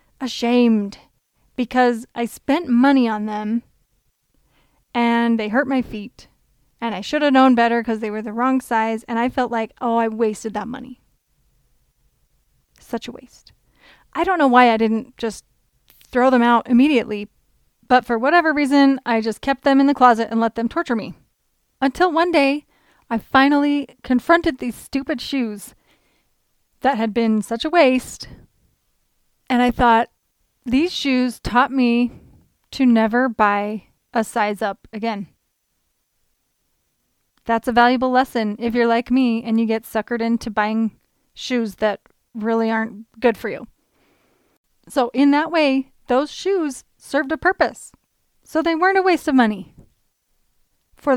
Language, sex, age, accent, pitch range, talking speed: English, female, 30-49, American, 225-270 Hz, 150 wpm